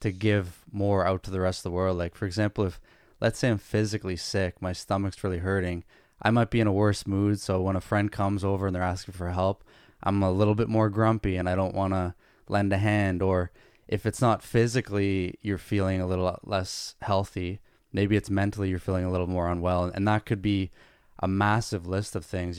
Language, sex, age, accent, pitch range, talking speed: English, male, 20-39, American, 95-110 Hz, 220 wpm